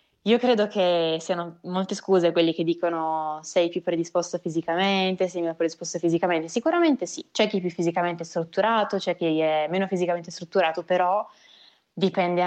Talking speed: 160 wpm